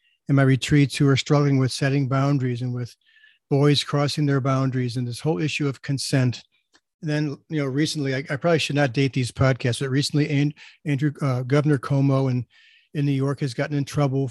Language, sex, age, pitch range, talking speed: English, male, 50-69, 135-165 Hz, 195 wpm